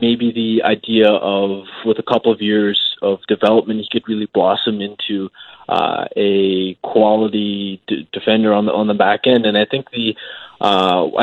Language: English